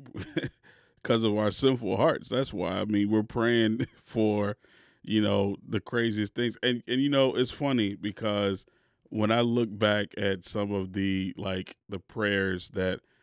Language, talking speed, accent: English, 165 wpm, American